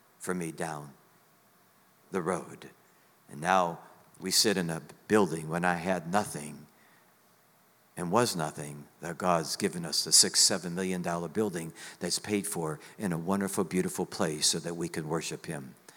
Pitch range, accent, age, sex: 100-155 Hz, American, 60-79, male